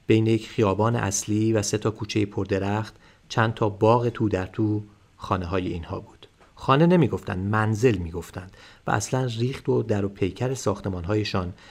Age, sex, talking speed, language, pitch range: 40-59, male, 155 wpm, Persian, 100-120 Hz